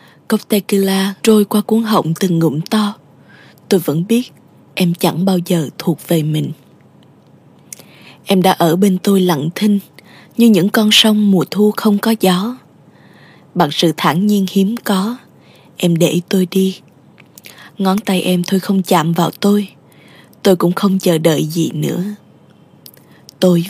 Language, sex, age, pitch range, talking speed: Vietnamese, female, 20-39, 170-205 Hz, 155 wpm